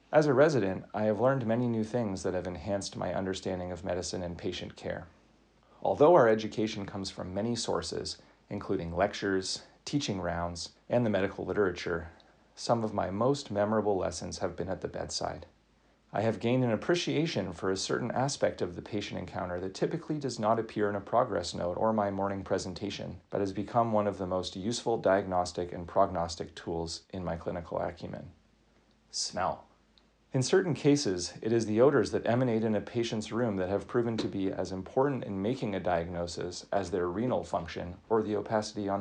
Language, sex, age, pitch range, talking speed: English, male, 30-49, 95-115 Hz, 185 wpm